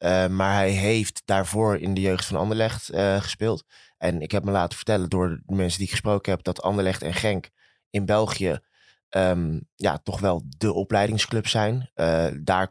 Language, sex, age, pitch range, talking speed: Dutch, male, 20-39, 95-105 Hz, 180 wpm